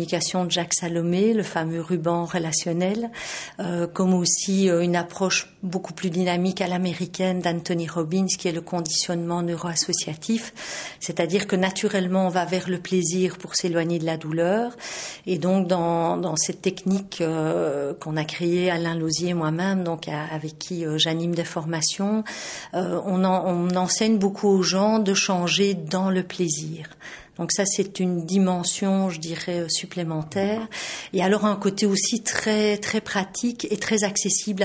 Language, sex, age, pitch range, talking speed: French, female, 40-59, 170-200 Hz, 160 wpm